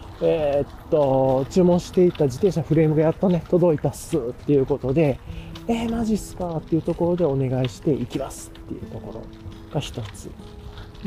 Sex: male